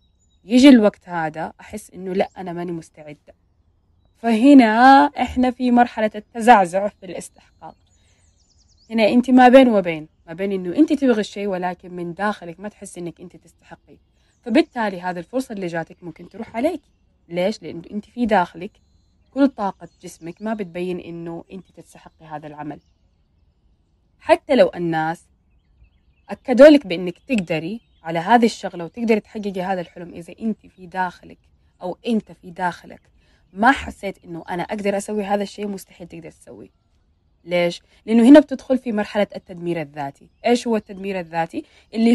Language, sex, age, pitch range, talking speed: Arabic, female, 20-39, 170-235 Hz, 145 wpm